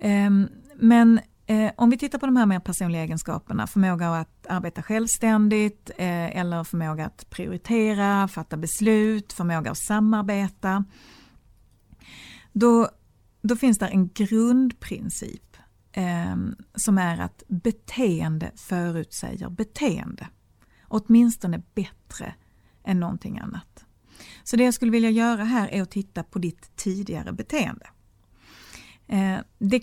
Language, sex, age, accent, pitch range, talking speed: Swedish, female, 30-49, native, 170-220 Hz, 110 wpm